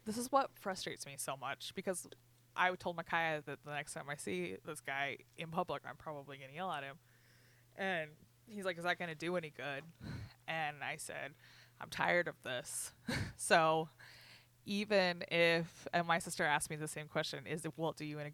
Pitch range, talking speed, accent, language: 140-185 Hz, 200 wpm, American, English